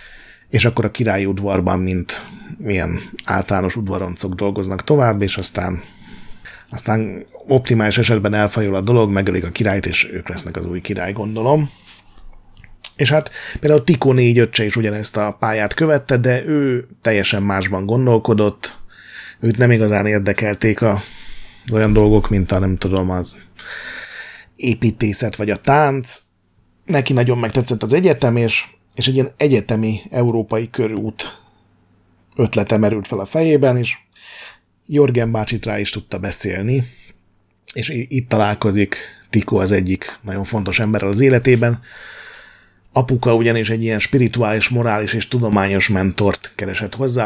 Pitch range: 100-120 Hz